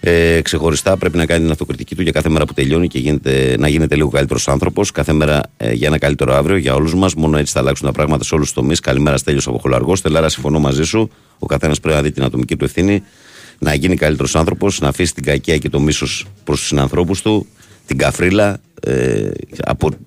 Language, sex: Greek, male